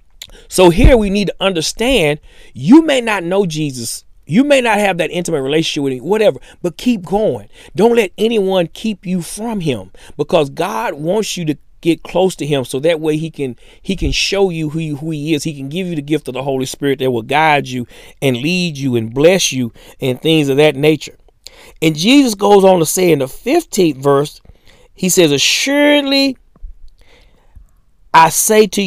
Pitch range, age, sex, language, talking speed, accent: 140-210 Hz, 40-59, male, English, 195 wpm, American